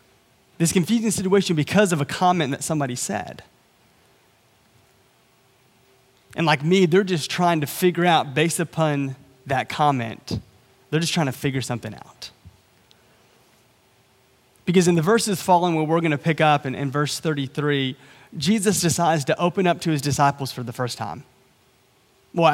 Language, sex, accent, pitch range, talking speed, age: English, male, American, 130-175 Hz, 155 wpm, 30-49